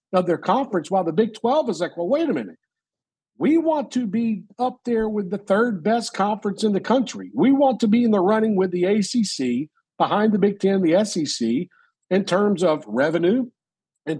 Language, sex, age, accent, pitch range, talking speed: English, male, 50-69, American, 190-250 Hz, 205 wpm